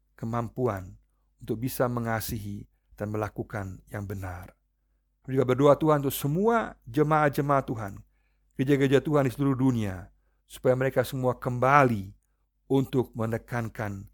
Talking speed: 110 wpm